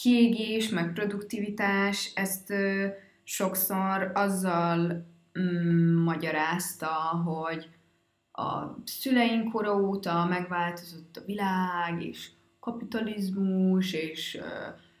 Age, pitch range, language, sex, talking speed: 20-39, 165-200 Hz, Hungarian, female, 70 wpm